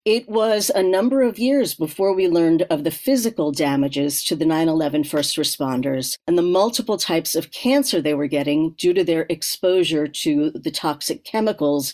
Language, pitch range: English, 155-200 Hz